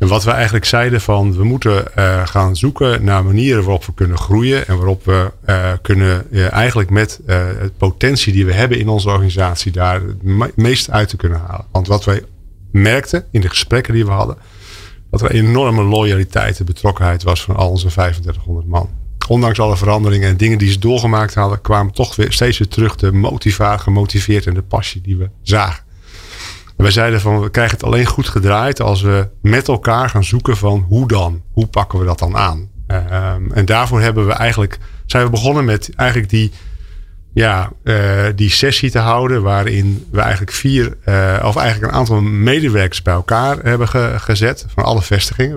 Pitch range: 95-115 Hz